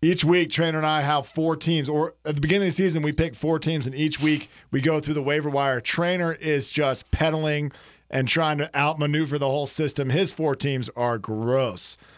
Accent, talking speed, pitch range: American, 215 wpm, 130-160 Hz